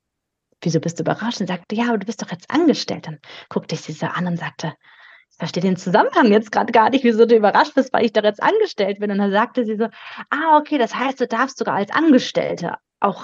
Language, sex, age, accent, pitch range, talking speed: German, female, 30-49, German, 190-235 Hz, 245 wpm